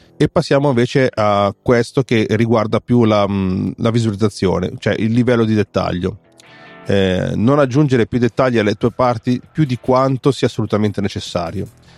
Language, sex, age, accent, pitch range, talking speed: Italian, male, 30-49, native, 100-125 Hz, 150 wpm